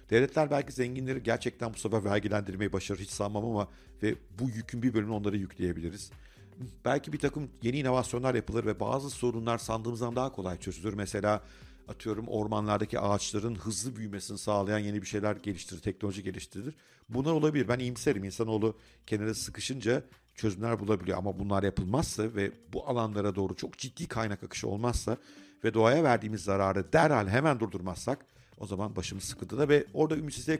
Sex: male